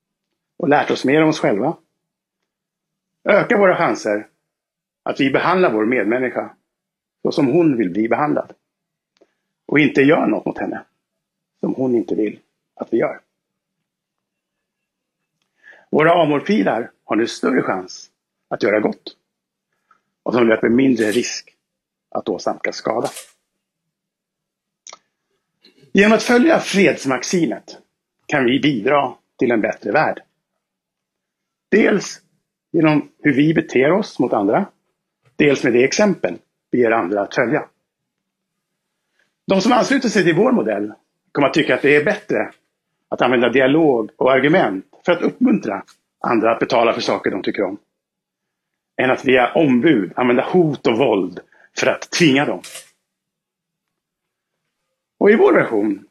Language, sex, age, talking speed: Swedish, male, 60-79, 135 wpm